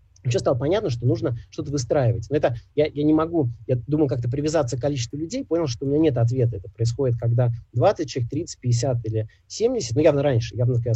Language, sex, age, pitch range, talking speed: Russian, male, 30-49, 115-145 Hz, 215 wpm